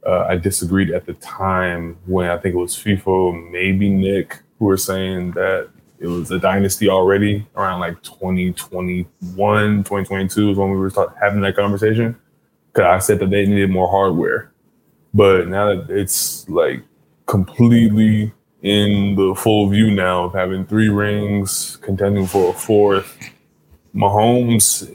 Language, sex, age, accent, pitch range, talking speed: English, male, 20-39, American, 95-105 Hz, 150 wpm